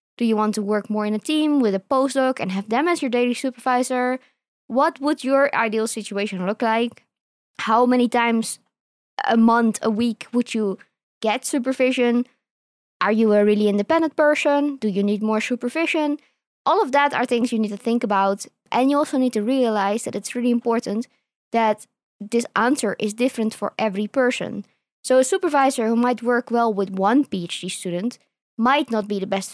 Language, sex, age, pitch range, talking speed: English, female, 20-39, 215-255 Hz, 185 wpm